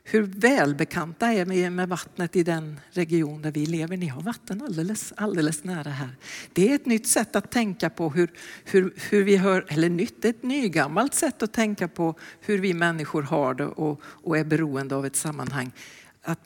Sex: female